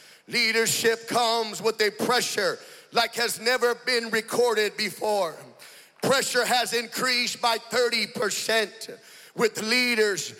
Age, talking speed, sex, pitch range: 40-59, 105 wpm, male, 215-245 Hz